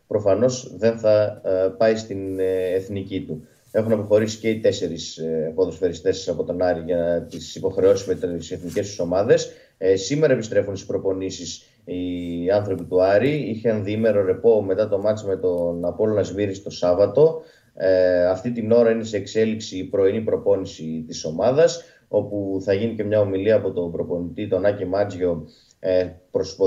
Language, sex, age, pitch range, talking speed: Greek, male, 20-39, 95-115 Hz, 160 wpm